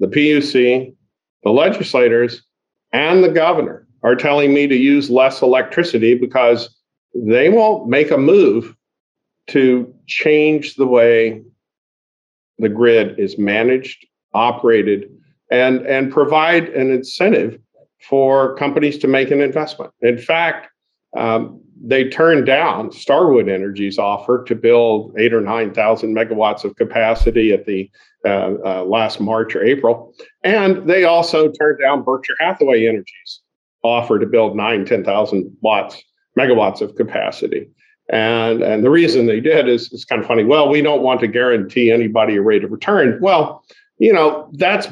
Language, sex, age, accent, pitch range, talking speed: English, male, 50-69, American, 115-155 Hz, 145 wpm